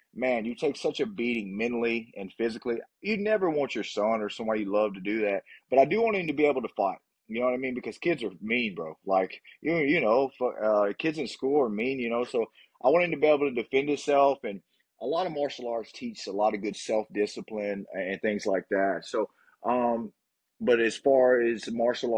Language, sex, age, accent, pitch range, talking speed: English, male, 30-49, American, 105-140 Hz, 240 wpm